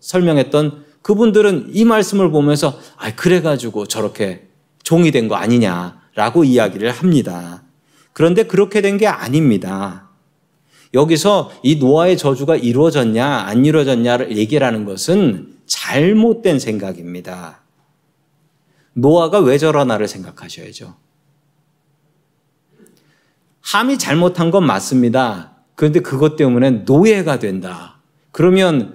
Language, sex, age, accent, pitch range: Korean, male, 40-59, native, 130-180 Hz